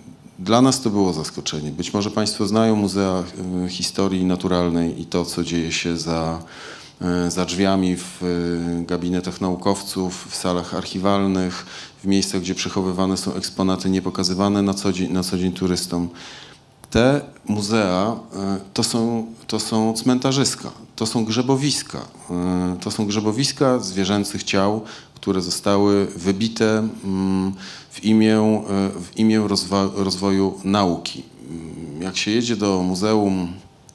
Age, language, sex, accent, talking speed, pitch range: 40-59, Polish, male, native, 120 wpm, 85-105 Hz